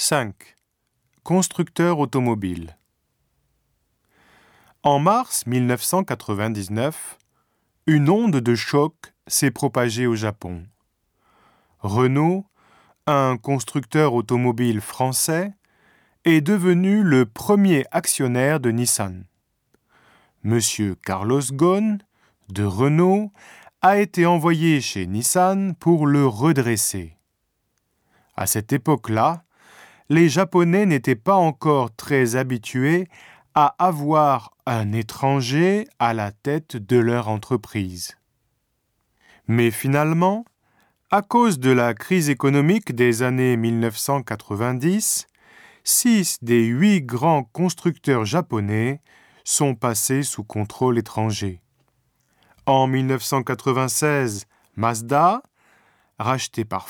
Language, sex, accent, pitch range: Japanese, male, French, 115-165 Hz